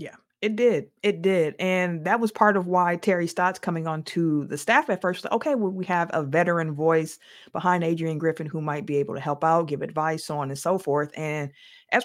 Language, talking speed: English, 240 wpm